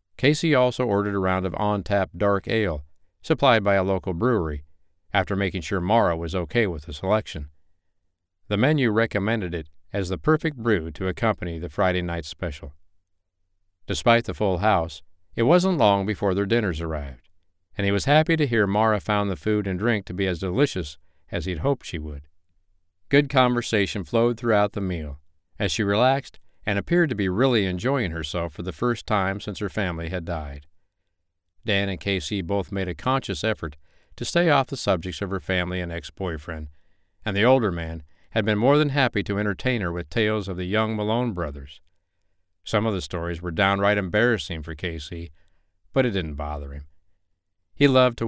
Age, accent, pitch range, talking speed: 50-69, American, 85-110 Hz, 185 wpm